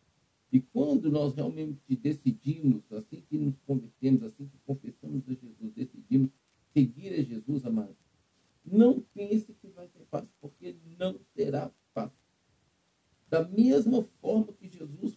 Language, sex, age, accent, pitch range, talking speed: Portuguese, male, 50-69, Brazilian, 130-205 Hz, 135 wpm